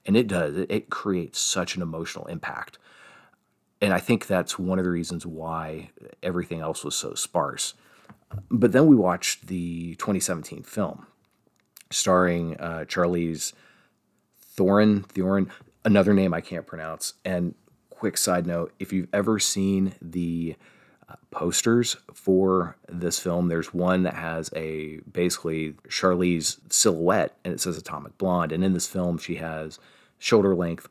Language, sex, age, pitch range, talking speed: English, male, 30-49, 80-95 Hz, 145 wpm